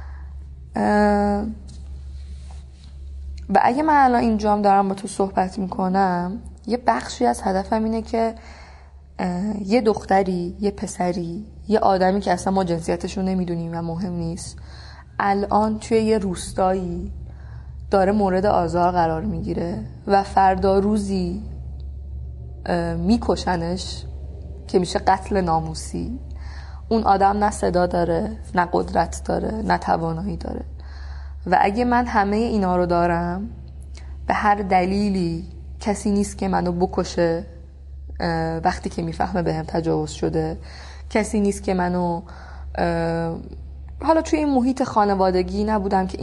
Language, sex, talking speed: Persian, female, 120 wpm